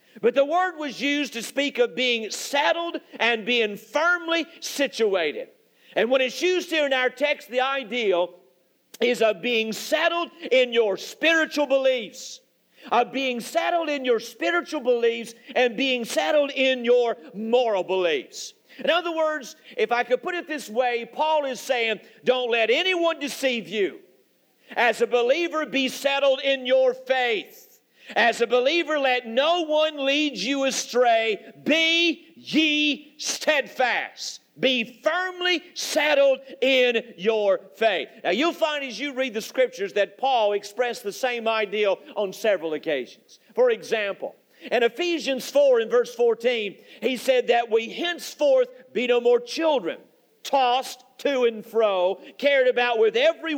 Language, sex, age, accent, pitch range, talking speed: English, male, 50-69, American, 235-310 Hz, 150 wpm